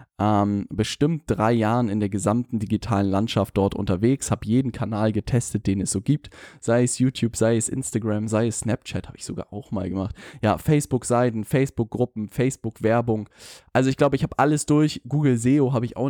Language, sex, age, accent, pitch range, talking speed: German, male, 10-29, German, 110-135 Hz, 185 wpm